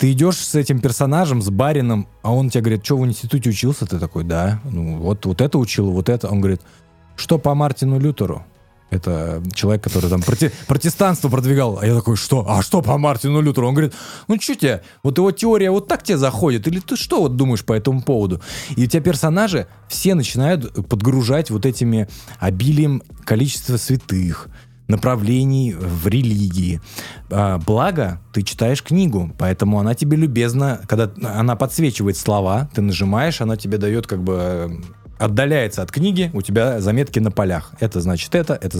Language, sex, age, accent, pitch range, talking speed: Russian, male, 20-39, native, 100-145 Hz, 175 wpm